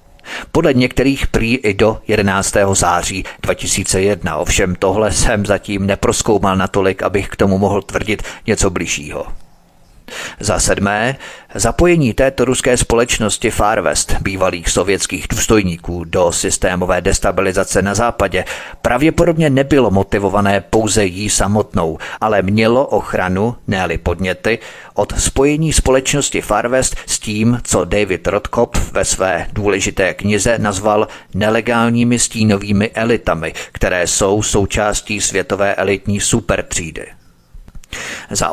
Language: Czech